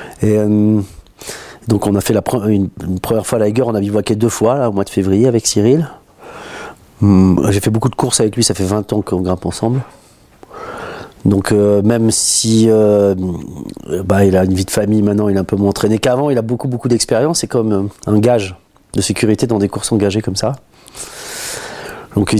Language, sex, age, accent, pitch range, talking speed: French, male, 40-59, French, 100-130 Hz, 210 wpm